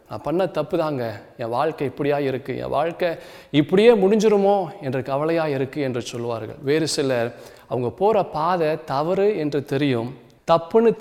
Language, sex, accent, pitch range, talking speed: Tamil, male, native, 120-160 Hz, 140 wpm